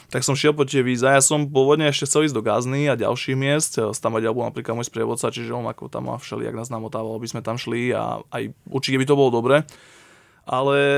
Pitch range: 120-145 Hz